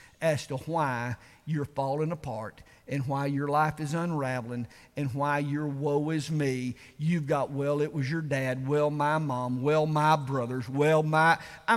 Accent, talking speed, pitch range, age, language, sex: American, 175 wpm, 135-185 Hz, 50-69, English, male